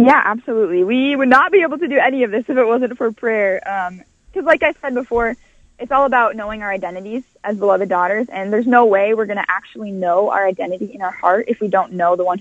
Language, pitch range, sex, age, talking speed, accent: English, 185-225 Hz, female, 20-39, 250 wpm, American